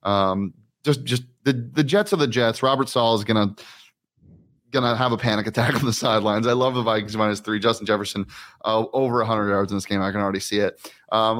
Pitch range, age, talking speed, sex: 110-125 Hz, 30-49, 230 wpm, male